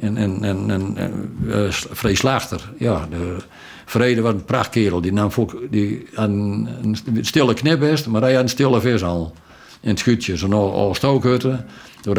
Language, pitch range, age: Dutch, 100-125 Hz, 60-79